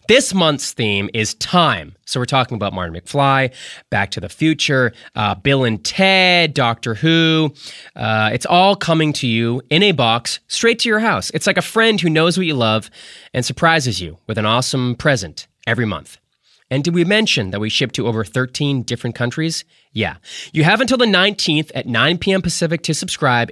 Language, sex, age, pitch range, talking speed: English, male, 20-39, 120-180 Hz, 195 wpm